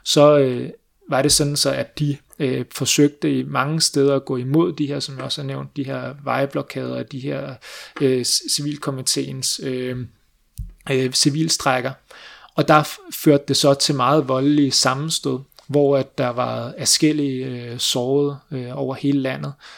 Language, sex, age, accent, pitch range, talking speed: Danish, male, 30-49, native, 130-150 Hz, 165 wpm